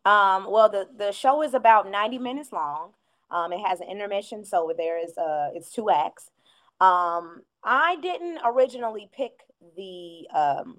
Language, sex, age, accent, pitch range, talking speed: English, female, 20-39, American, 180-235 Hz, 160 wpm